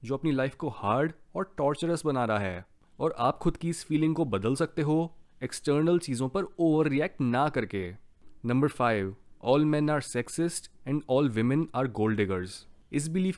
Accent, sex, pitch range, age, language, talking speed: native, male, 115-165 Hz, 20-39, Hindi, 125 wpm